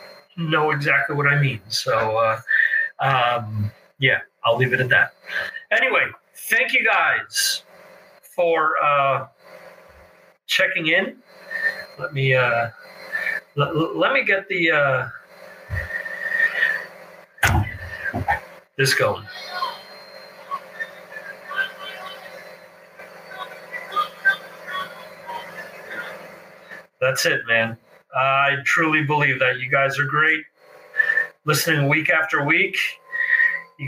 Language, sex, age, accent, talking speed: English, male, 50-69, American, 85 wpm